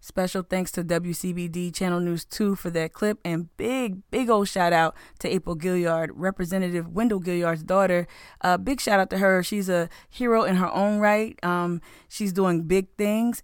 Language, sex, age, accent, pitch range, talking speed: English, female, 20-39, American, 175-205 Hz, 185 wpm